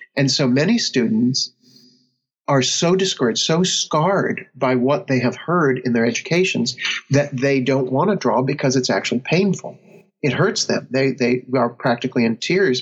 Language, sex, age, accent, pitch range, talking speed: English, male, 50-69, American, 120-140 Hz, 170 wpm